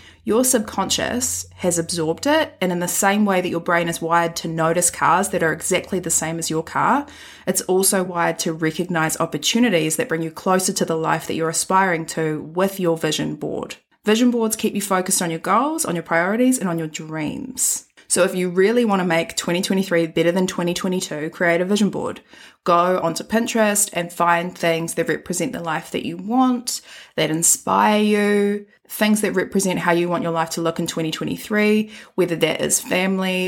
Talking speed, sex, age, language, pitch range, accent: 195 wpm, female, 20-39, English, 165-205 Hz, Australian